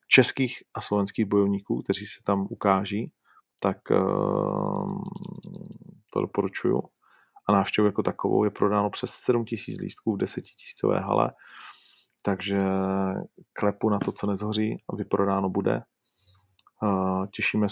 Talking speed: 110 wpm